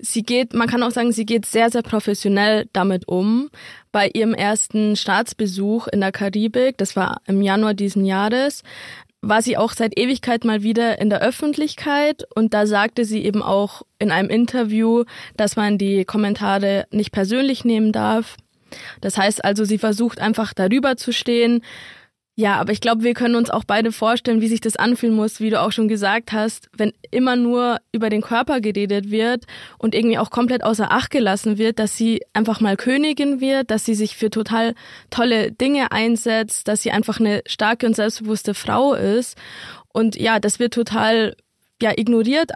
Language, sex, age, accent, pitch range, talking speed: German, female, 20-39, German, 210-235 Hz, 180 wpm